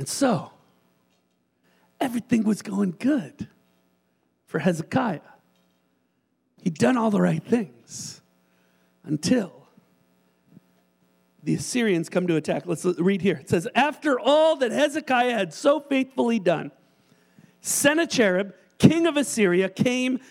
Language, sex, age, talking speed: English, male, 50-69, 110 wpm